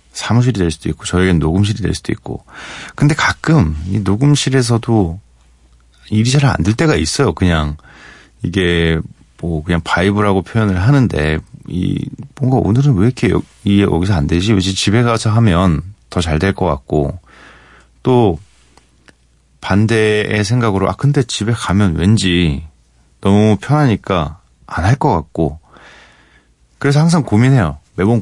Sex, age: male, 30-49